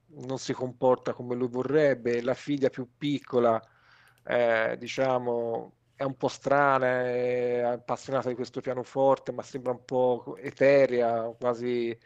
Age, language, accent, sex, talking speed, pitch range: 40-59, Italian, native, male, 135 wpm, 120-140 Hz